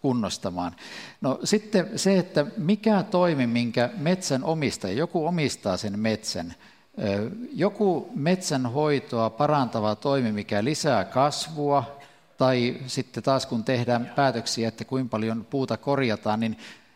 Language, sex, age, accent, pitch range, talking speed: Finnish, male, 50-69, native, 115-145 Hz, 115 wpm